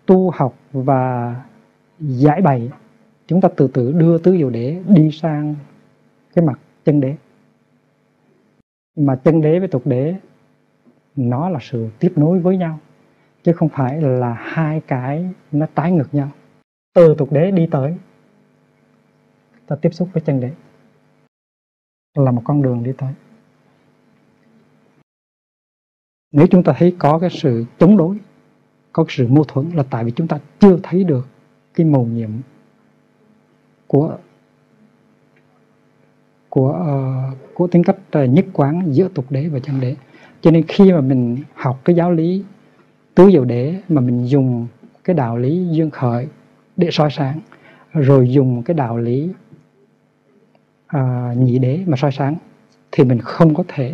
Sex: male